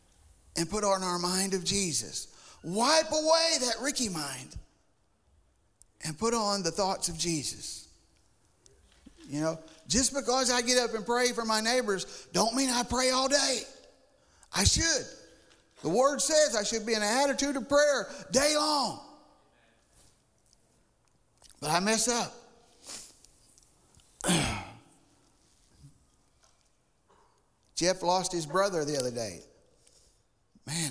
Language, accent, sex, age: English, American, male, 50-69